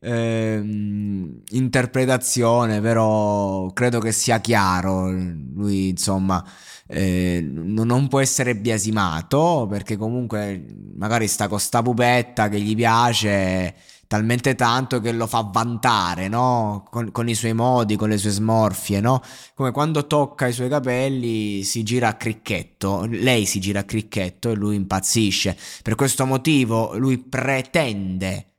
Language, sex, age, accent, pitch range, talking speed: Italian, male, 20-39, native, 105-130 Hz, 130 wpm